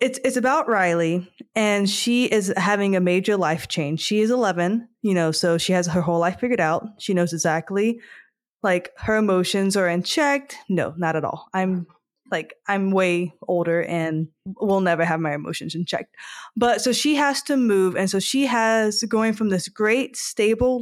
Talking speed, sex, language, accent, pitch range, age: 190 wpm, female, English, American, 175-235 Hz, 20-39